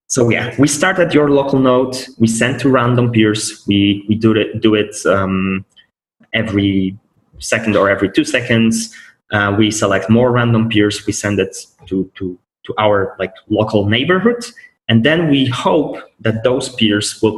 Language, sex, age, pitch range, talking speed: English, male, 20-39, 100-125 Hz, 175 wpm